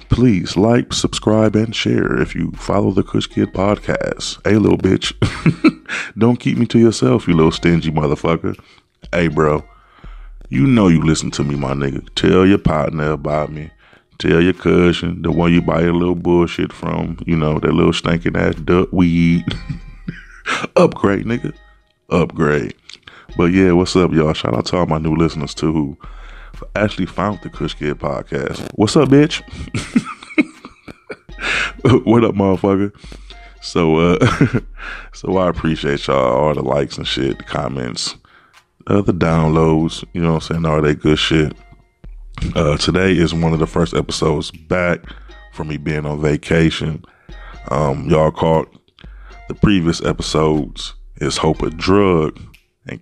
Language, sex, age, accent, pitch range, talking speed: English, male, 20-39, American, 80-95 Hz, 155 wpm